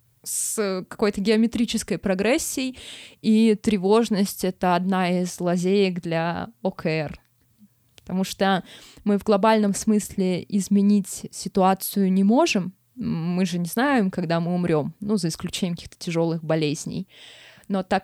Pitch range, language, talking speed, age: 185-235 Hz, Russian, 125 wpm, 20-39